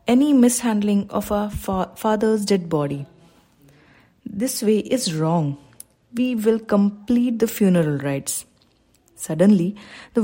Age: 30-49